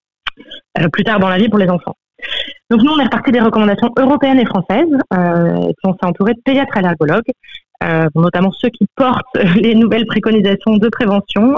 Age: 30-49